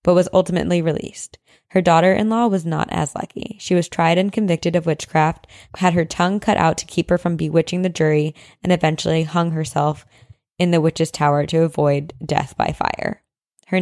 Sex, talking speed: female, 185 wpm